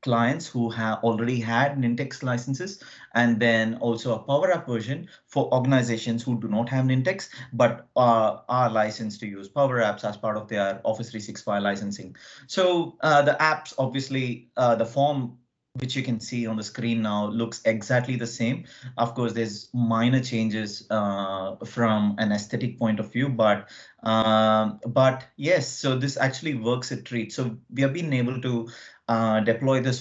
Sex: male